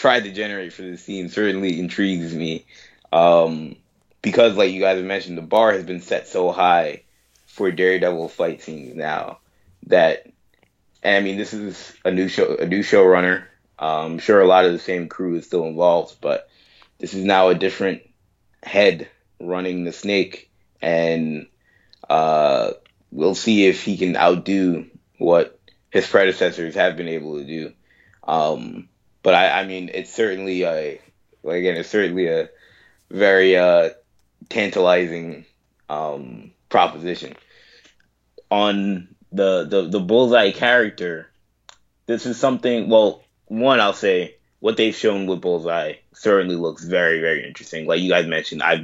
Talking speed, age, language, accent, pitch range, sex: 150 wpm, 20-39, English, American, 85-100 Hz, male